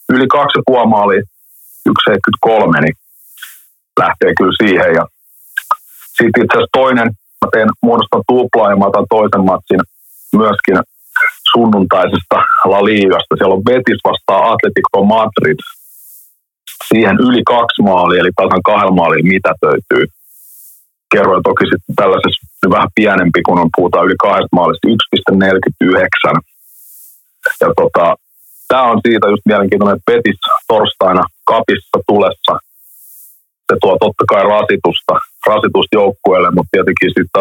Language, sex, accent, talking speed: Finnish, male, native, 115 wpm